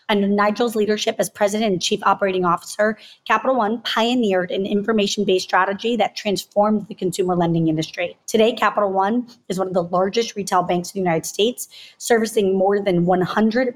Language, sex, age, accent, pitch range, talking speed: English, female, 30-49, American, 185-225 Hz, 170 wpm